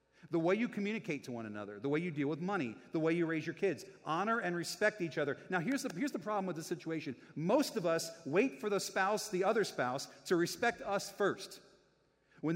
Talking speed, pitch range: 225 wpm, 125-190 Hz